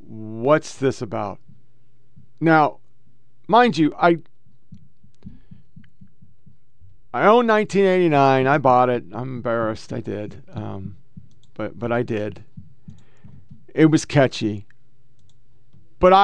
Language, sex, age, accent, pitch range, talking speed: English, male, 40-59, American, 120-155 Hz, 95 wpm